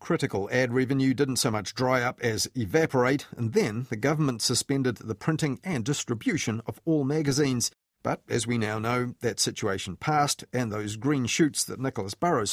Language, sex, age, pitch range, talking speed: English, male, 40-59, 110-145 Hz, 175 wpm